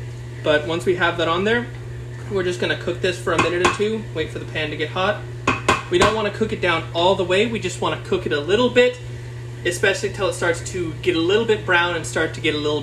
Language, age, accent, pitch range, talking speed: English, 20-39, American, 120-165 Hz, 280 wpm